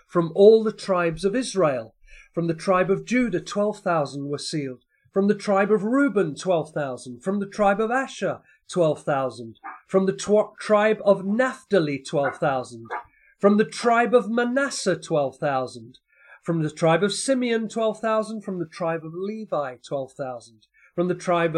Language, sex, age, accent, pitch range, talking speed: English, male, 40-59, British, 160-210 Hz, 145 wpm